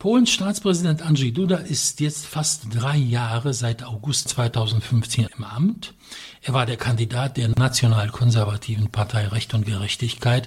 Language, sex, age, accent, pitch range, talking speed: English, male, 60-79, German, 115-145 Hz, 140 wpm